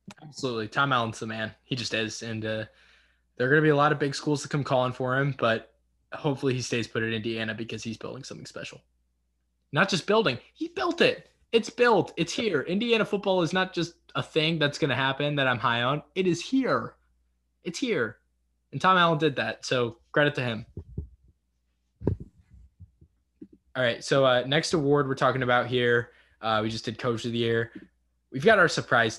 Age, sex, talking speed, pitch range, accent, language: 20-39, male, 195 wpm, 110-155 Hz, American, English